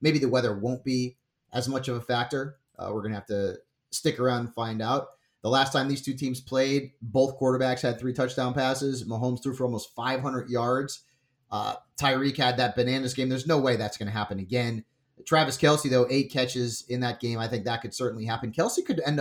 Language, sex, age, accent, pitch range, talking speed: English, male, 30-49, American, 110-135 Hz, 220 wpm